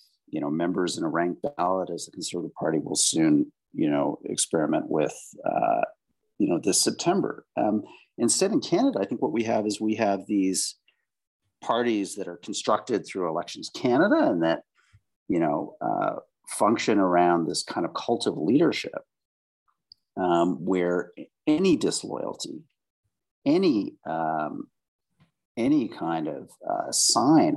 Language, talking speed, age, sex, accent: English, 140 wpm, 50-69, male, American